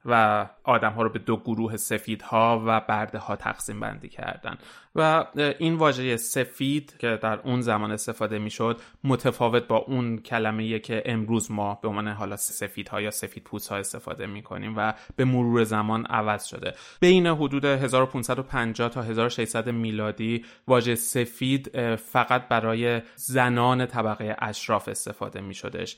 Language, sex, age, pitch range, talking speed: Persian, male, 20-39, 105-120 Hz, 150 wpm